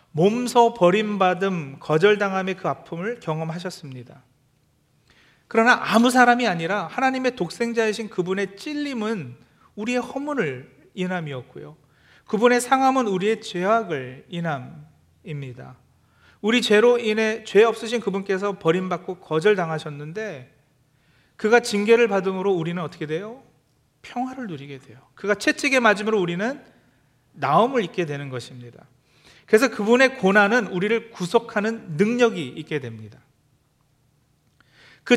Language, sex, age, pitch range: Korean, male, 40-59, 150-220 Hz